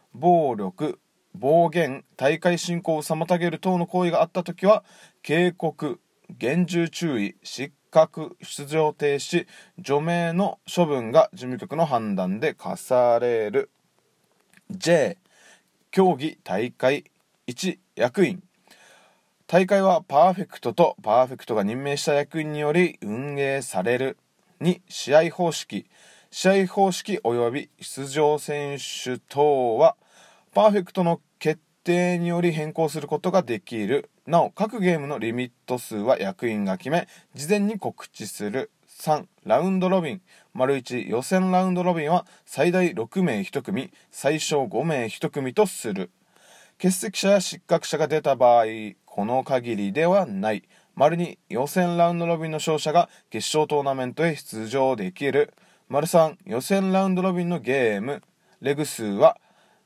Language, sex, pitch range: Japanese, male, 140-185 Hz